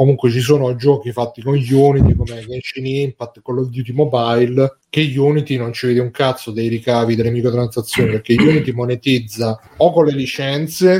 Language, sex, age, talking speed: Italian, male, 30-49, 175 wpm